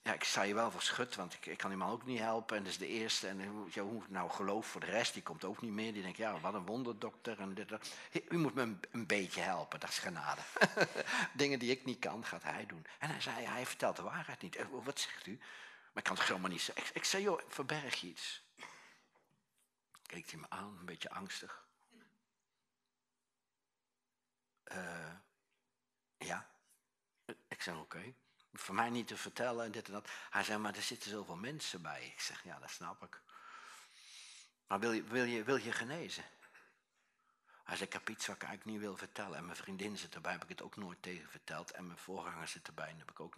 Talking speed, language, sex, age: 220 wpm, Dutch, male, 60-79